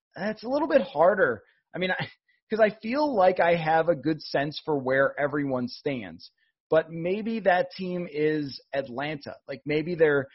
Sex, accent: male, American